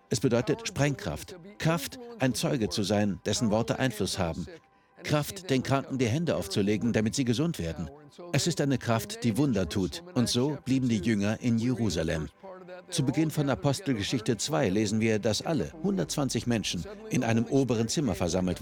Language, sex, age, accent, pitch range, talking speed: German, male, 60-79, German, 110-150 Hz, 170 wpm